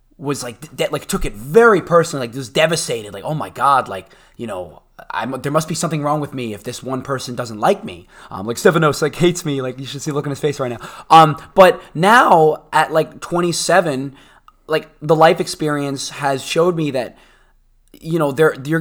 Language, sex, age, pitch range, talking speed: English, male, 20-39, 125-160 Hz, 220 wpm